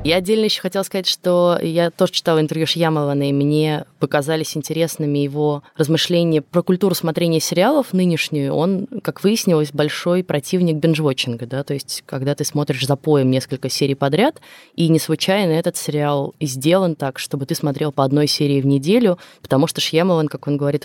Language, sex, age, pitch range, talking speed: Russian, female, 20-39, 140-170 Hz, 175 wpm